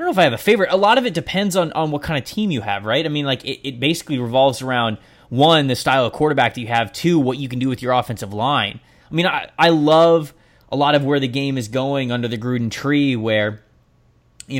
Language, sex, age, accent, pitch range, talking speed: English, male, 20-39, American, 110-135 Hz, 270 wpm